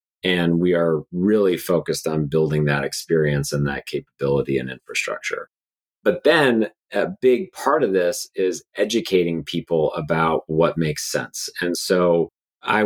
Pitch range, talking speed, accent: 80-100 Hz, 145 wpm, American